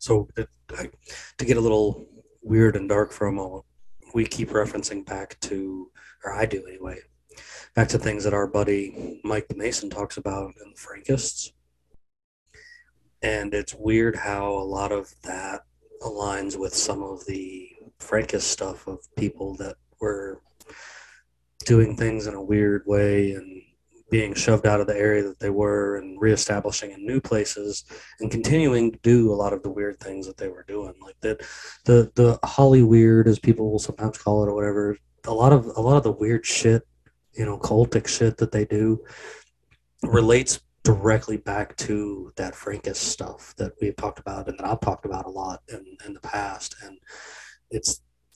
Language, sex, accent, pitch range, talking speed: English, male, American, 100-115 Hz, 175 wpm